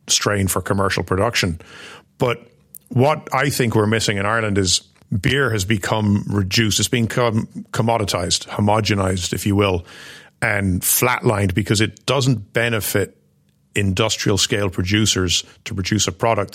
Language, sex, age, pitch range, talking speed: English, male, 40-59, 100-115 Hz, 135 wpm